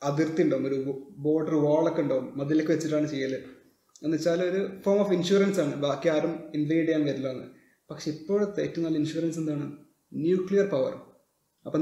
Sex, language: male, Malayalam